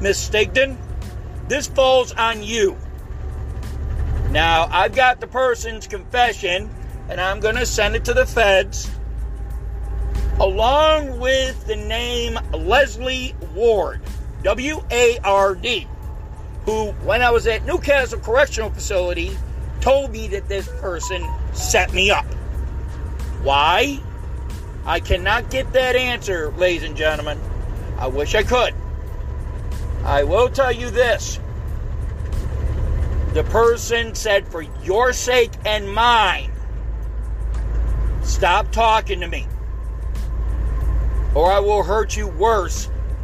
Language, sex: English, male